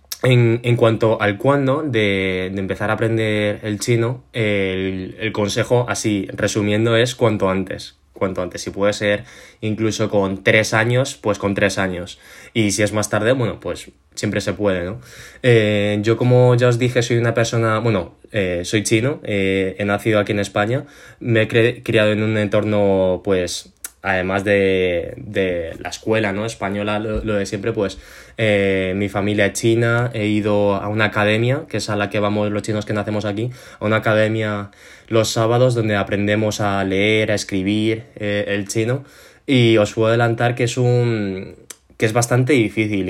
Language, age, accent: Spanish, 20-39, Spanish